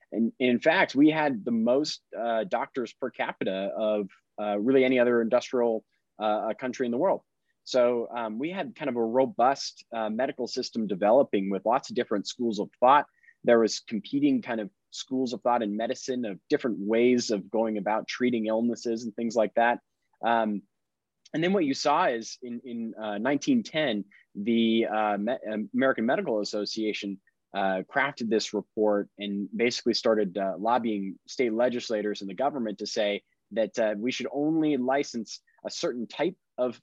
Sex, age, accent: male, 30-49, American